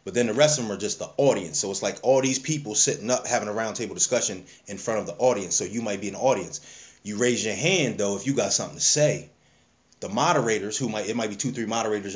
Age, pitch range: 20-39, 100-135 Hz